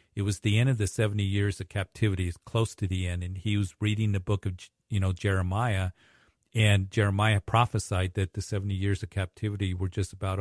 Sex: male